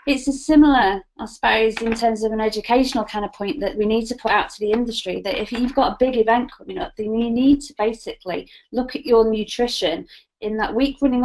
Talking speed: 235 wpm